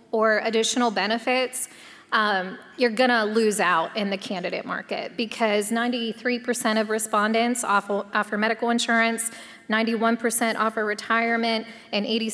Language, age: English, 20-39